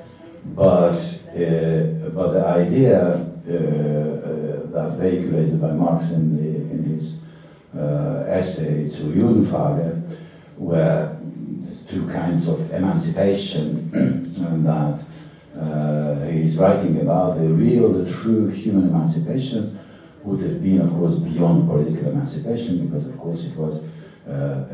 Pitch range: 75-100 Hz